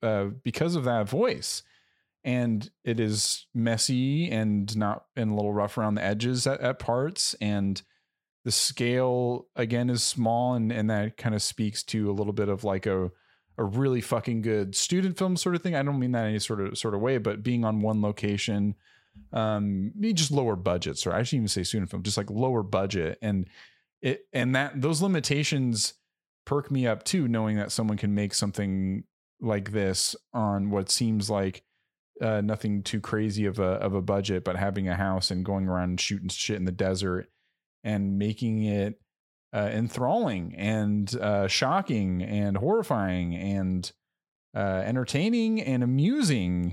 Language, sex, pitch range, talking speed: English, male, 100-125 Hz, 180 wpm